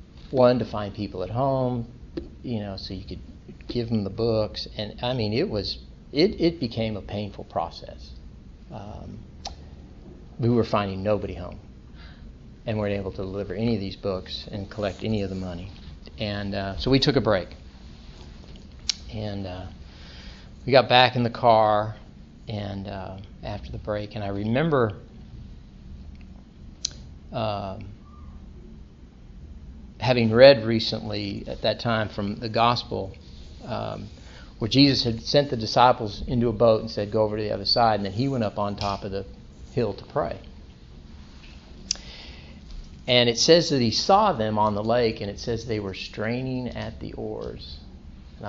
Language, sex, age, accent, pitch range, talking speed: English, male, 40-59, American, 75-115 Hz, 160 wpm